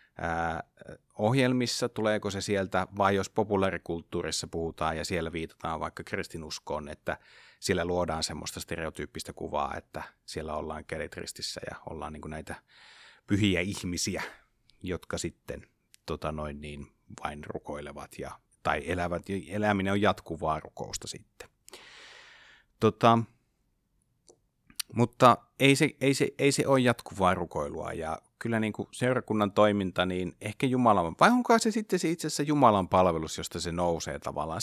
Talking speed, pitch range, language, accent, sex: 130 wpm, 85-115 Hz, Finnish, native, male